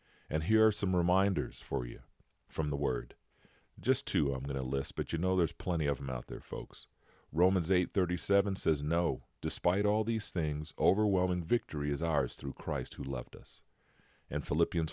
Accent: American